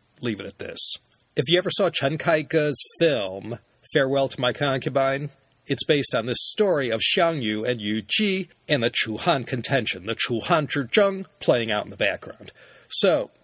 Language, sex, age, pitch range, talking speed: English, male, 40-59, 125-175 Hz, 185 wpm